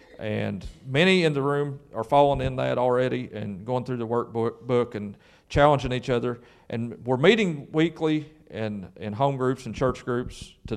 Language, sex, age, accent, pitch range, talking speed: English, male, 40-59, American, 110-145 Hz, 175 wpm